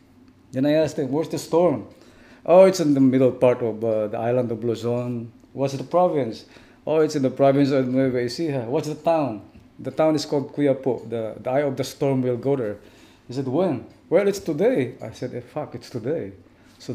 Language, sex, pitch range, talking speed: English, male, 120-145 Hz, 210 wpm